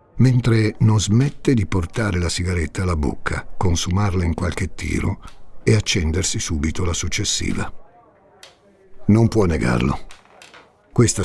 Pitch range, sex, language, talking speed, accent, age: 85-110 Hz, male, Italian, 115 wpm, native, 60-79